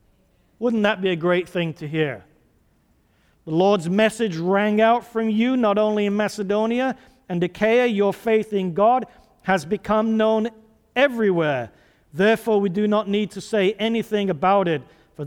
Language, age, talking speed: English, 50-69, 155 wpm